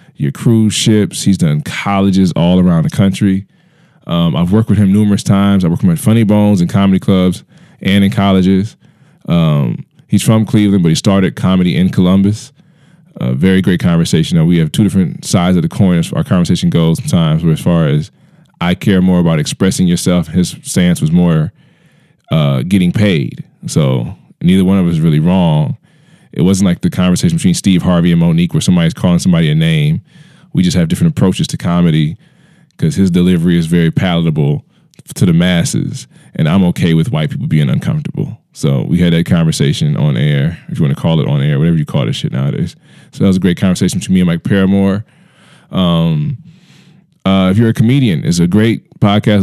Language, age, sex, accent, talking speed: English, 20-39, male, American, 205 wpm